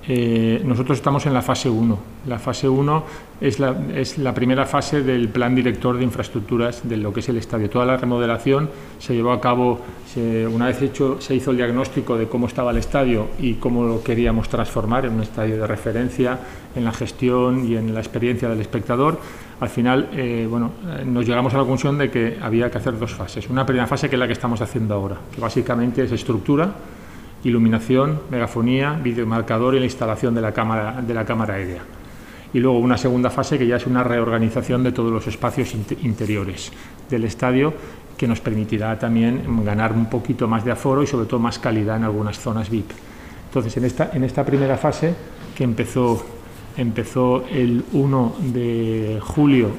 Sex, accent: male, Spanish